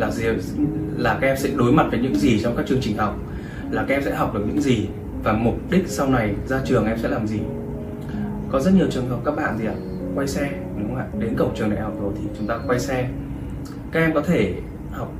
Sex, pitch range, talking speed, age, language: male, 120-160 Hz, 250 wpm, 20-39, Vietnamese